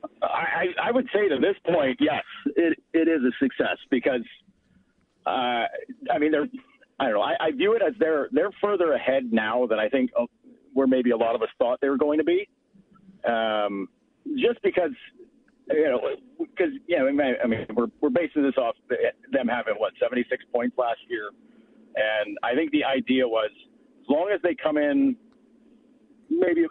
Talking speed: 180 wpm